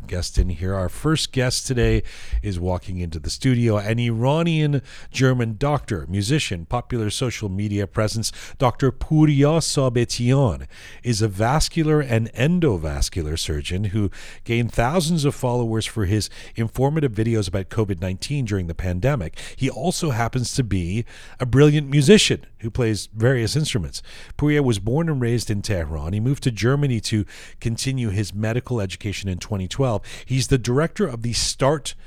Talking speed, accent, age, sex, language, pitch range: 150 wpm, American, 40-59, male, English, 95-130 Hz